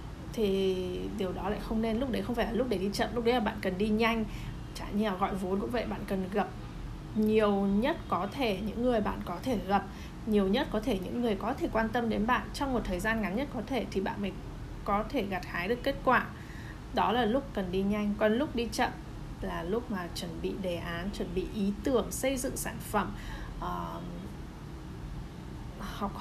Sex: female